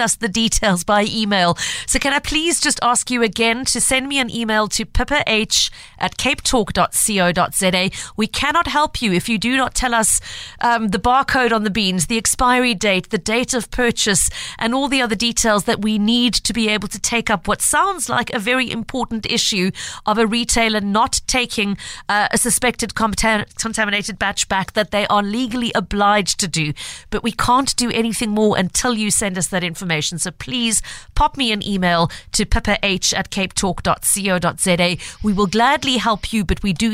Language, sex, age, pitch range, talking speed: English, female, 40-59, 200-250 Hz, 185 wpm